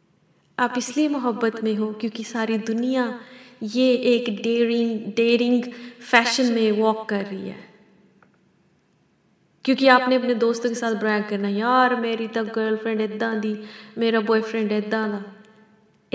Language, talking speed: Hindi, 140 wpm